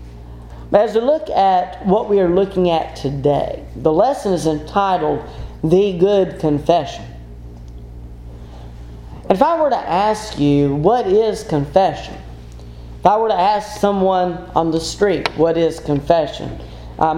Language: English